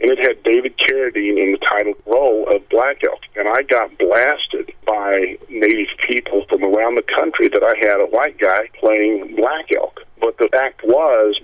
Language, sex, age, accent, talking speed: English, male, 50-69, American, 190 wpm